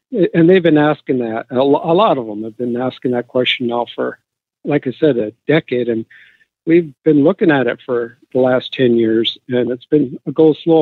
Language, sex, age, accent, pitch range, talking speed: English, male, 50-69, American, 125-150 Hz, 205 wpm